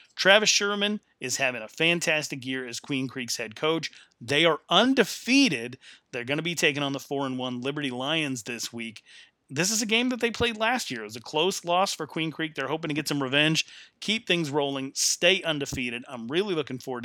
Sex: male